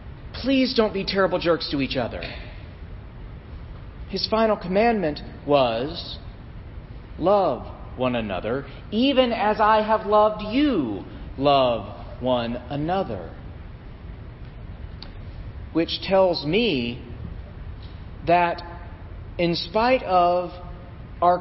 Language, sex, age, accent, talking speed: English, male, 40-59, American, 90 wpm